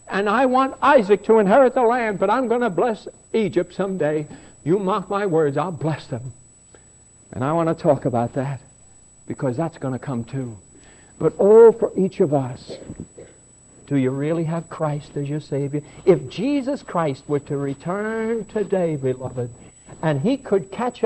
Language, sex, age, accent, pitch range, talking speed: English, male, 60-79, American, 150-230 Hz, 175 wpm